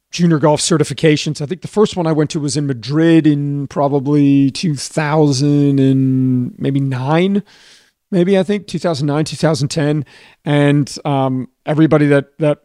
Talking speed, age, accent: 130 wpm, 40-59, American